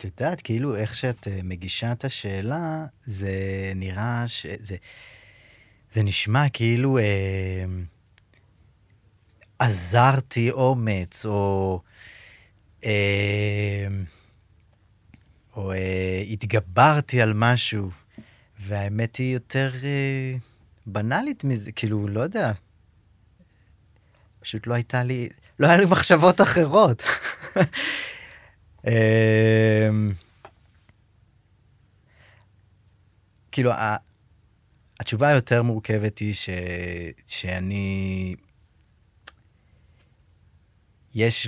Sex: male